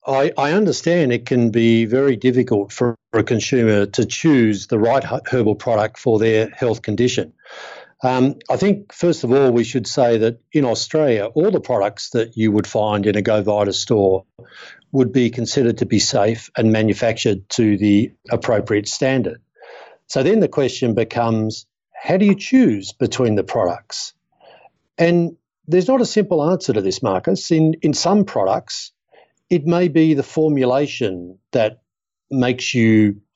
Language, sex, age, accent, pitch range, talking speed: English, male, 50-69, Australian, 110-135 Hz, 160 wpm